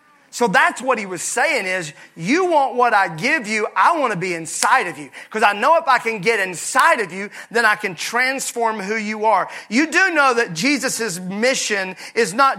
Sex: male